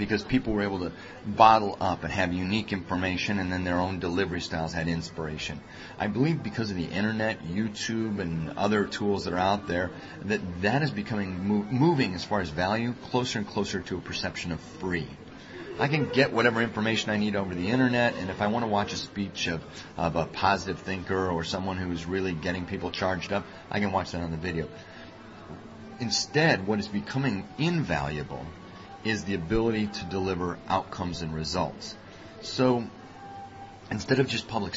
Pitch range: 90-110 Hz